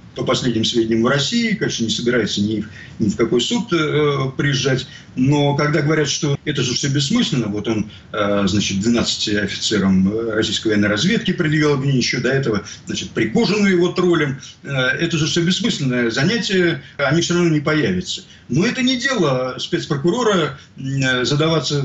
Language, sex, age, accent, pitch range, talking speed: Russian, male, 50-69, native, 120-170 Hz, 160 wpm